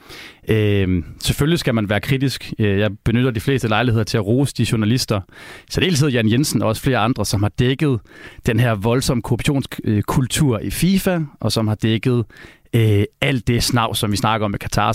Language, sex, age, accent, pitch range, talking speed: Danish, male, 30-49, native, 105-140 Hz, 185 wpm